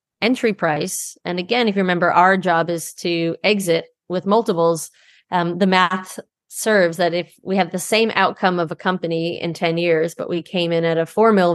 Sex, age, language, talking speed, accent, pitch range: female, 30-49, English, 205 wpm, American, 170-200 Hz